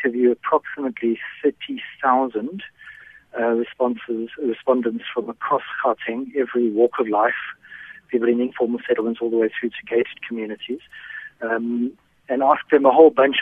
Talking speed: 135 wpm